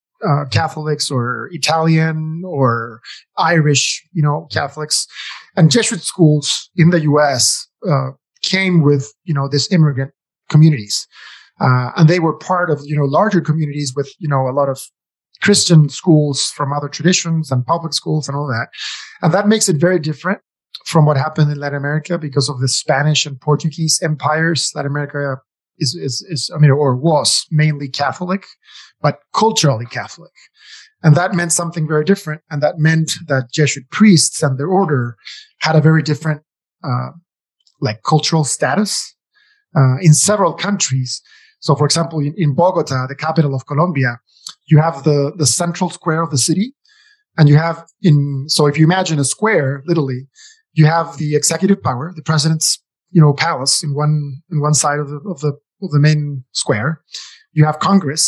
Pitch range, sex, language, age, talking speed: 145-170 Hz, male, English, 30-49, 170 wpm